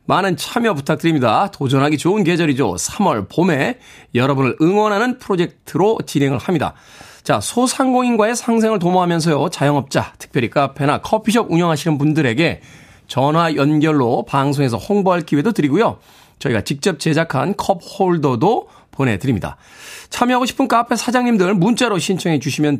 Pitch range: 140-200 Hz